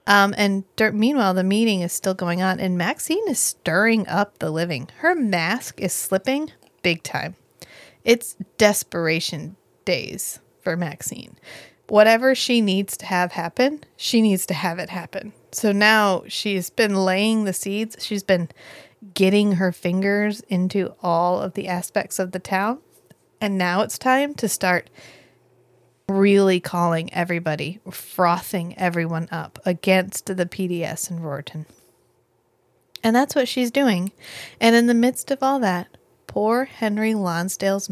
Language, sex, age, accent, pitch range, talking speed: English, female, 30-49, American, 175-220 Hz, 145 wpm